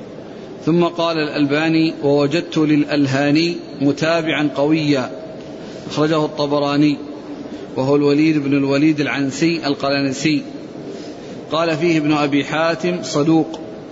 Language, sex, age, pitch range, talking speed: Arabic, male, 40-59, 145-165 Hz, 90 wpm